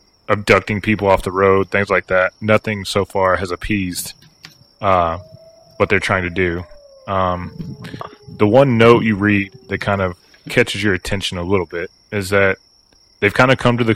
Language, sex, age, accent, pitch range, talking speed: English, male, 20-39, American, 95-110 Hz, 180 wpm